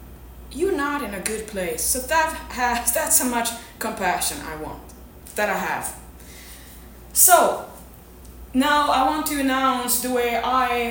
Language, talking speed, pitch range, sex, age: English, 150 wpm, 215-260 Hz, female, 20-39